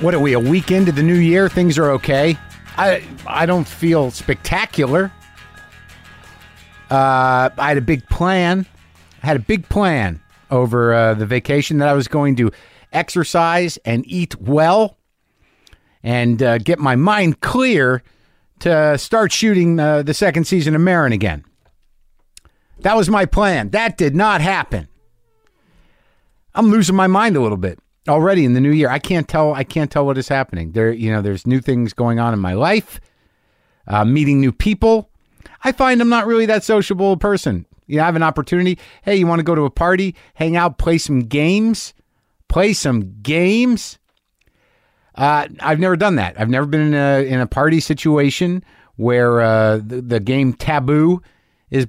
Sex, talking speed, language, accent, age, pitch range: male, 175 wpm, English, American, 50-69, 125-180 Hz